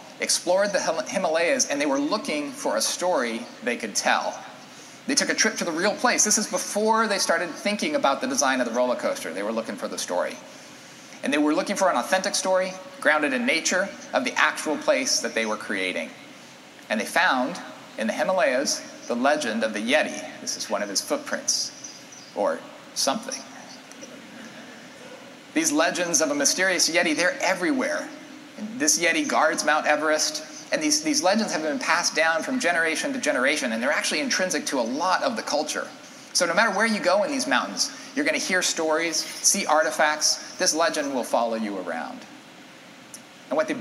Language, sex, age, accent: Dutch, male, 40-59, American